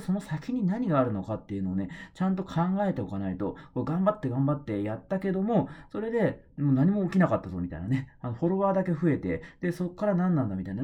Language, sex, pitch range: Japanese, male, 120-175 Hz